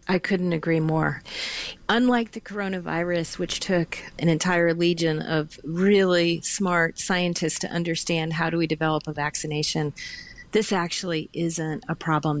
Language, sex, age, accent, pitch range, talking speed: English, female, 40-59, American, 165-205 Hz, 140 wpm